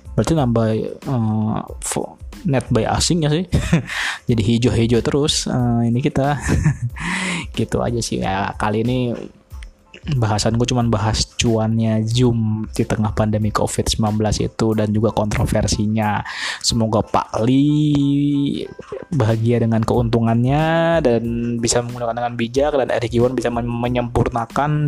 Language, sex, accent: Indonesian, male, native